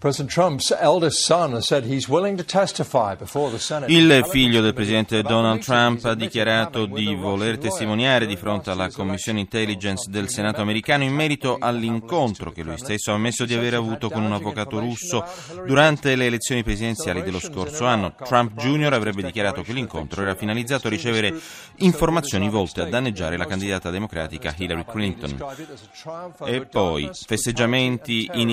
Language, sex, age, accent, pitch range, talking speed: Italian, male, 30-49, native, 95-125 Hz, 135 wpm